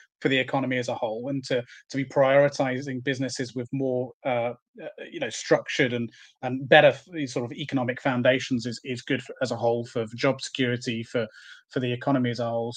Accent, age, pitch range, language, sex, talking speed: British, 30-49, 125-145 Hz, English, male, 195 wpm